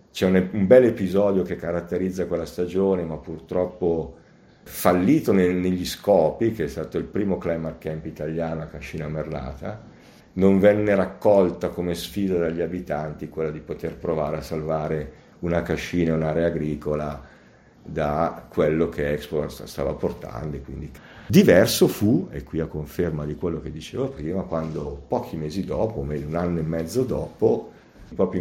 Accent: native